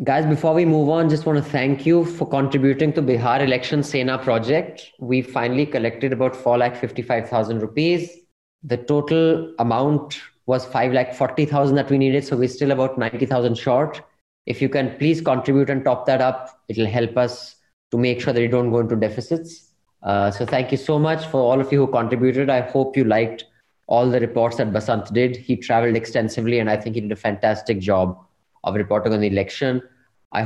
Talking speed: 190 wpm